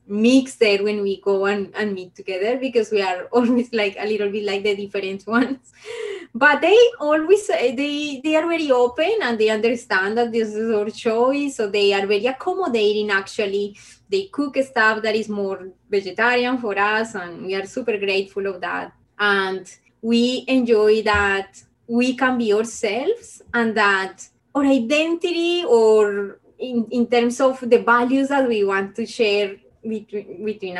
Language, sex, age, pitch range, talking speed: English, female, 20-39, 200-255 Hz, 165 wpm